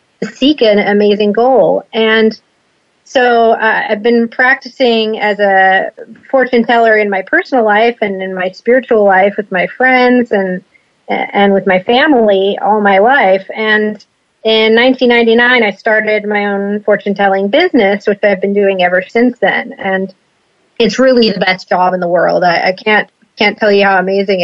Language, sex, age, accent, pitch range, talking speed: English, female, 30-49, American, 200-245 Hz, 165 wpm